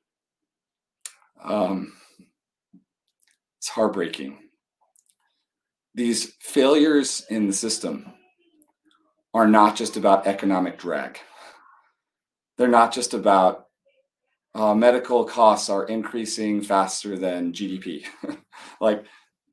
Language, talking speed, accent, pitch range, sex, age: English, 85 wpm, American, 100-120 Hz, male, 40-59